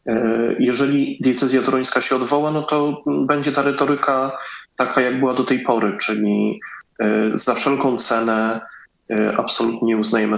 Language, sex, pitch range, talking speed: Polish, male, 105-125 Hz, 125 wpm